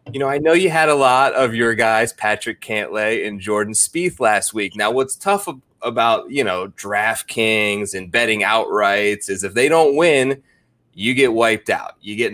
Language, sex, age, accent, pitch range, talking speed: English, male, 20-39, American, 105-135 Hz, 200 wpm